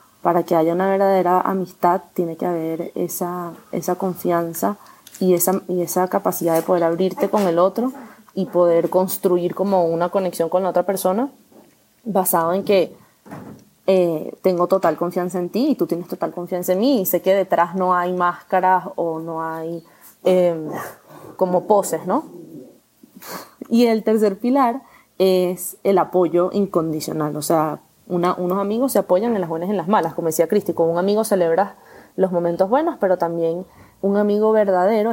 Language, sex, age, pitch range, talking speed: Spanish, female, 20-39, 175-215 Hz, 170 wpm